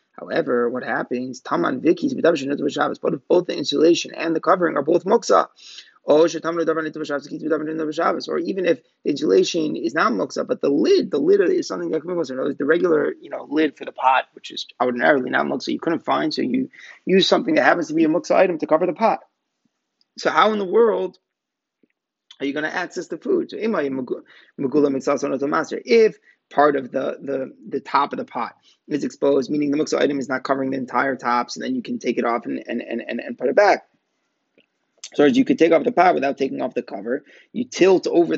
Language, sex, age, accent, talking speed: English, male, 30-49, American, 200 wpm